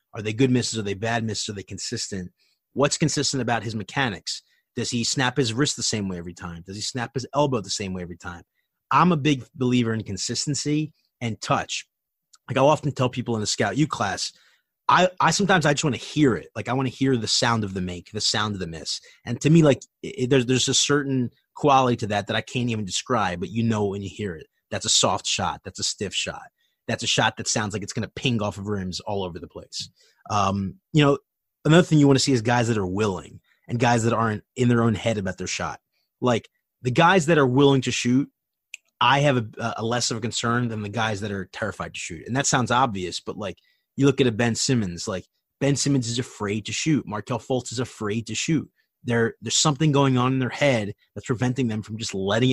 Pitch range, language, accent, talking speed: 105-135 Hz, English, American, 245 wpm